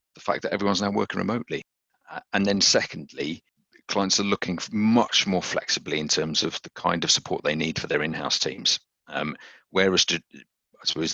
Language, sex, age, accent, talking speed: English, male, 40-59, British, 185 wpm